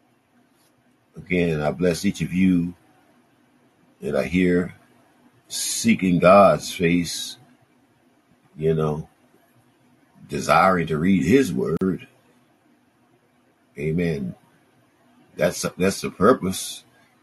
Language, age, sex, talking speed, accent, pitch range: English, 50-69, male, 85 wpm, American, 85-100 Hz